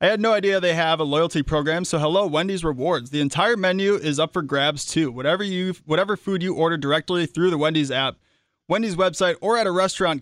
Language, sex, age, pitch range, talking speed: English, male, 20-39, 140-170 Hz, 225 wpm